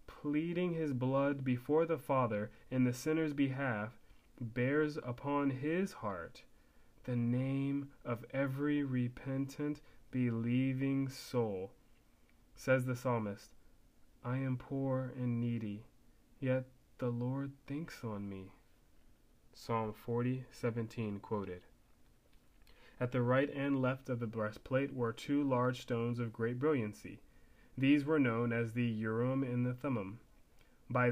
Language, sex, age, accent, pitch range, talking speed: English, male, 30-49, American, 120-140 Hz, 120 wpm